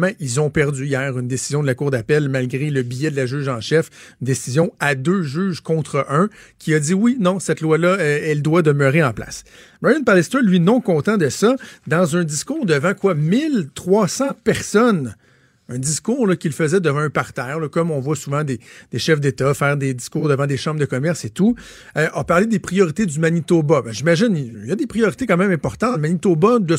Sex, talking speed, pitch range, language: male, 220 wpm, 140-185 Hz, French